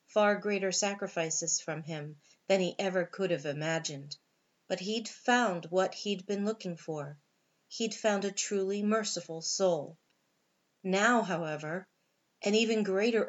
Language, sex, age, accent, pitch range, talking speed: English, female, 40-59, American, 170-210 Hz, 135 wpm